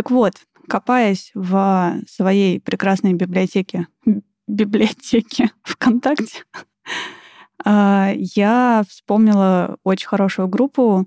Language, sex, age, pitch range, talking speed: Russian, female, 20-39, 180-210 Hz, 80 wpm